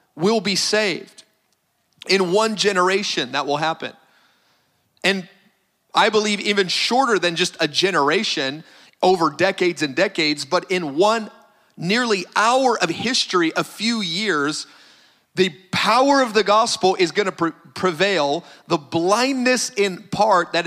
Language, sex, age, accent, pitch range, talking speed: English, male, 40-59, American, 165-215 Hz, 130 wpm